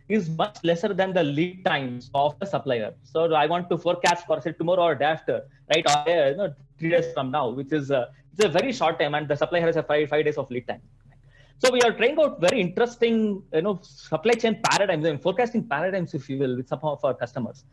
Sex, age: male, 20-39